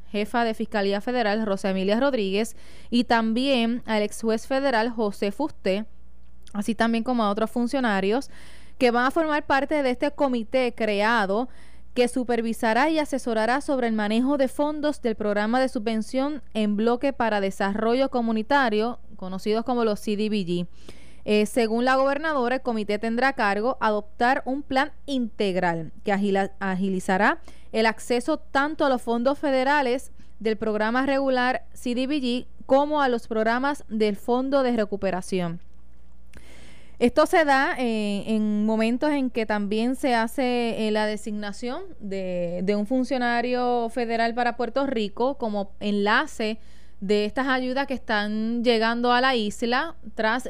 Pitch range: 210-255 Hz